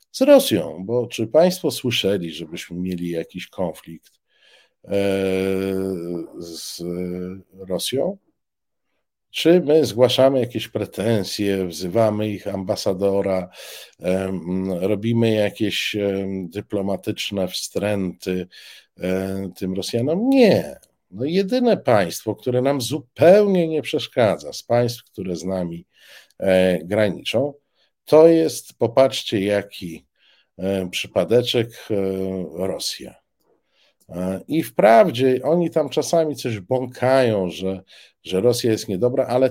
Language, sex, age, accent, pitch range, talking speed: Polish, male, 50-69, native, 95-130 Hz, 90 wpm